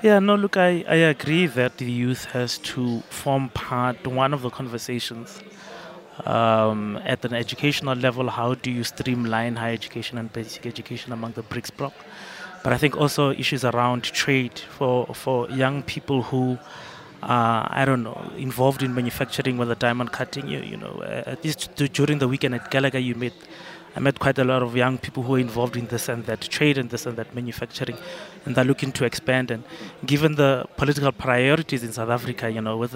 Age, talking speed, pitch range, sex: 20-39, 195 wpm, 120-140 Hz, male